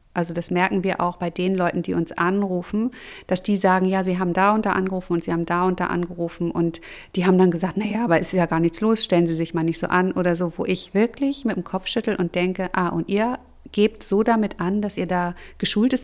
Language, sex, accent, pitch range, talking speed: German, female, German, 175-205 Hz, 260 wpm